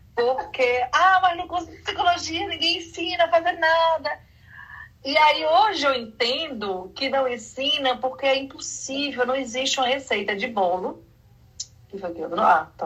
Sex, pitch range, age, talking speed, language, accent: female, 215-315 Hz, 40-59, 170 wpm, Portuguese, Brazilian